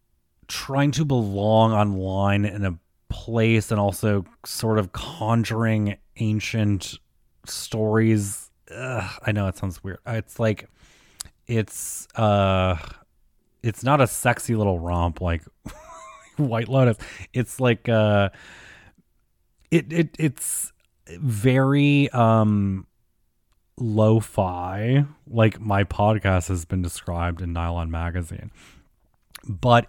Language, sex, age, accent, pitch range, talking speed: English, male, 30-49, American, 90-115 Hz, 105 wpm